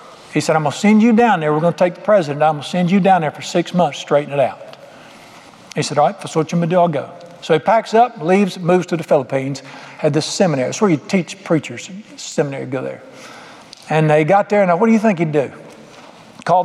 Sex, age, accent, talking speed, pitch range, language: male, 60-79, American, 250 wpm, 155-205 Hz, English